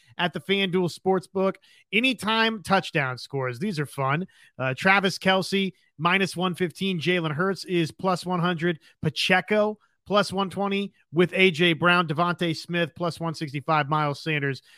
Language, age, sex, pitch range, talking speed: English, 30-49, male, 160-205 Hz, 130 wpm